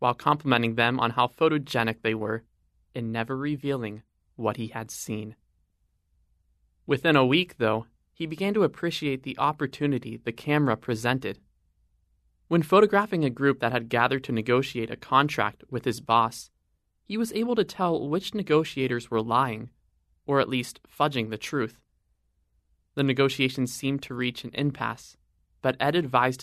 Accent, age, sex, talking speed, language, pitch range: American, 20-39, male, 150 wpm, English, 105-130 Hz